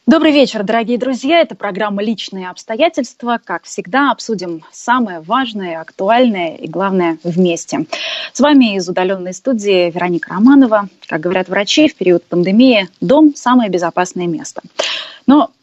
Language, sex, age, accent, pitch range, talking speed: Russian, female, 20-39, native, 175-225 Hz, 135 wpm